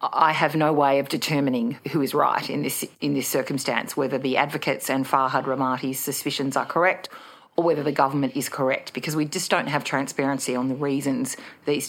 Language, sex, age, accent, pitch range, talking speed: English, female, 40-59, Australian, 135-155 Hz, 195 wpm